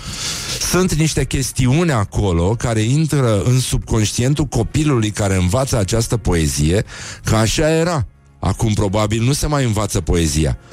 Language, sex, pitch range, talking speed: Romanian, male, 100-135 Hz, 130 wpm